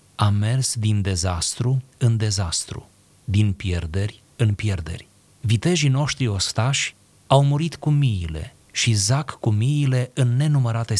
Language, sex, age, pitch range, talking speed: Romanian, male, 30-49, 100-135 Hz, 125 wpm